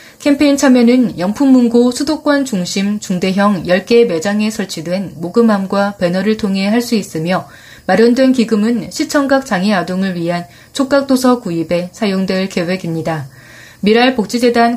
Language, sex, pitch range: Korean, female, 180-240 Hz